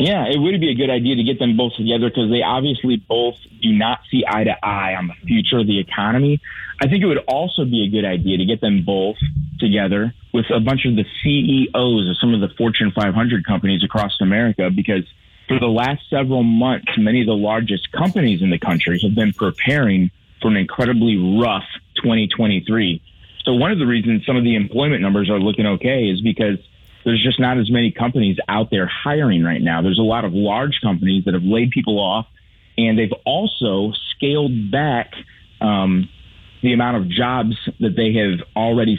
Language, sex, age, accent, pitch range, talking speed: English, male, 30-49, American, 100-125 Hz, 200 wpm